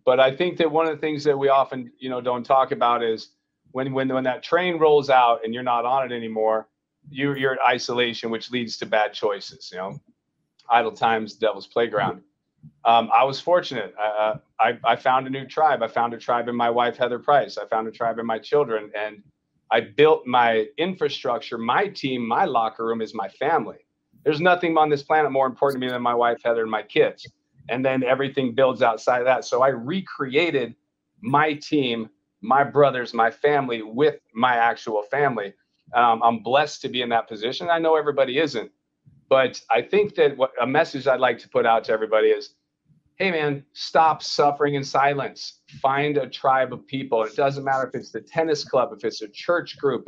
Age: 40-59